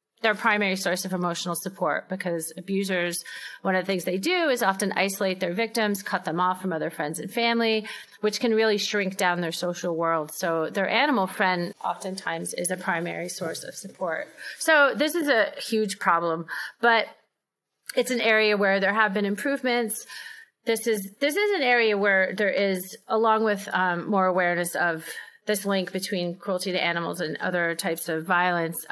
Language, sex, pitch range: English, female, 165-215 Hz